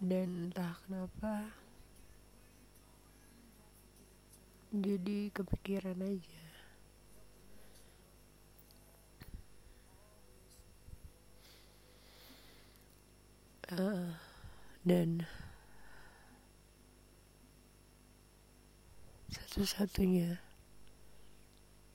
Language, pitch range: Indonesian, 110-180 Hz